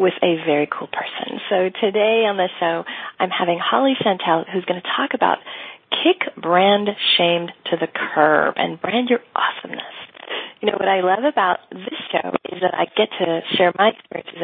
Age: 40-59